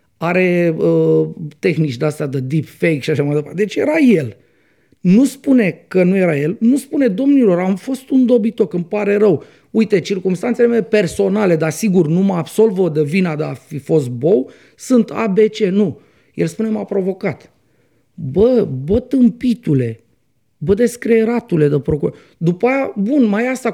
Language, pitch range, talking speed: Romanian, 165-245 Hz, 160 wpm